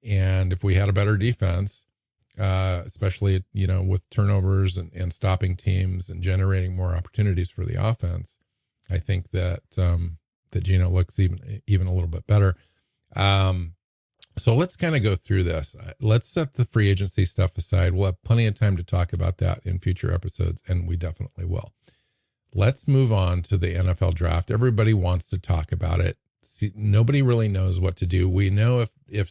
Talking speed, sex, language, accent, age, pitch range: 185 wpm, male, English, American, 50-69, 90-105 Hz